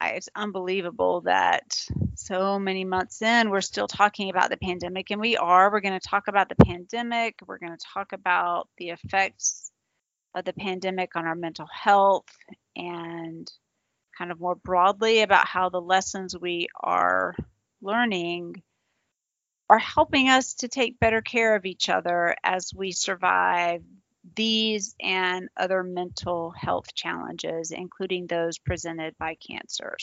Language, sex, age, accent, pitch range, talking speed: English, female, 30-49, American, 175-220 Hz, 145 wpm